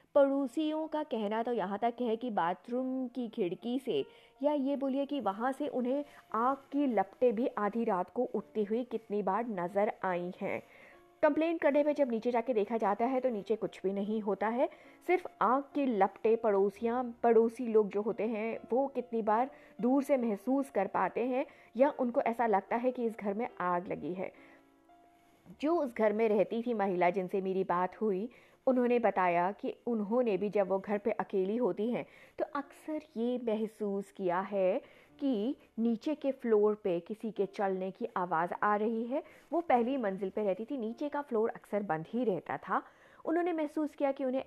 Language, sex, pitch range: Hindi, female, 200-265 Hz